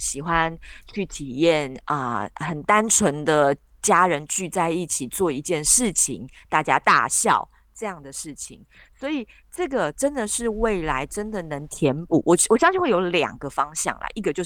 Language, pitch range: Chinese, 140-190 Hz